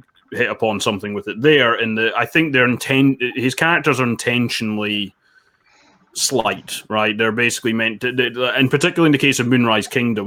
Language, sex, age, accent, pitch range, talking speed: English, male, 20-39, British, 105-130 Hz, 175 wpm